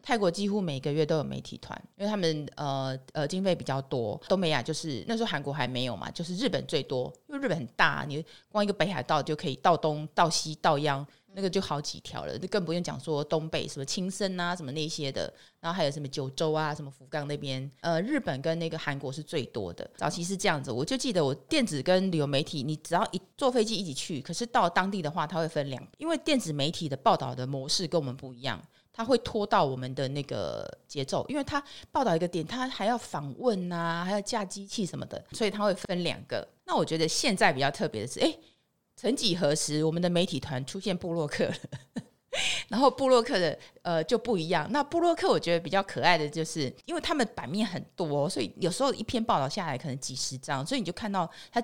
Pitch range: 145-200 Hz